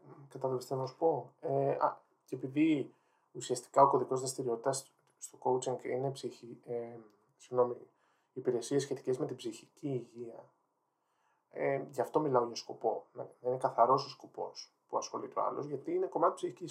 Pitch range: 125-180 Hz